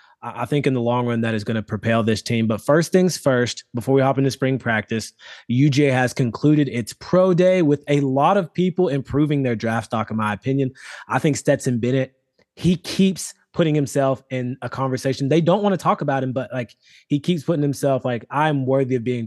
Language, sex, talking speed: English, male, 220 wpm